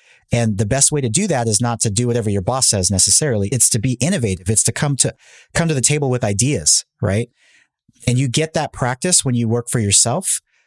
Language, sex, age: English, male, 30-49